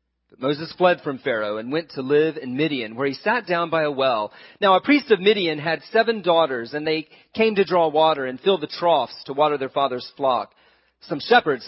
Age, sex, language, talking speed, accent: 40-59, male, English, 215 wpm, American